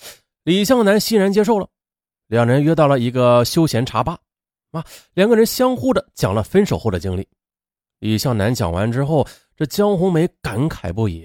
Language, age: Chinese, 30-49